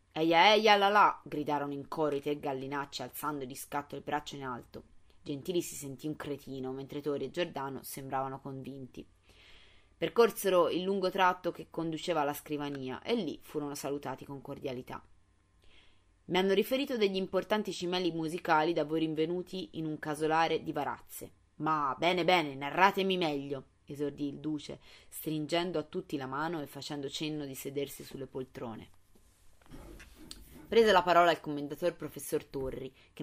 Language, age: Italian, 20-39